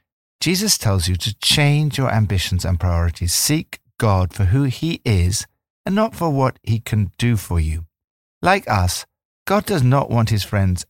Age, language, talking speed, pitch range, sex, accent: 60-79, English, 175 wpm, 90-130 Hz, male, British